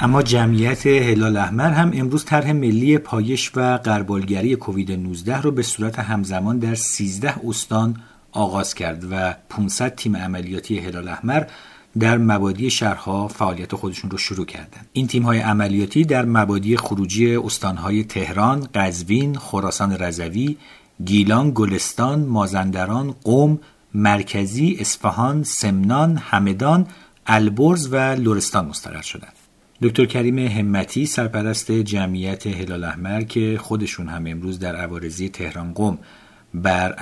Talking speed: 125 wpm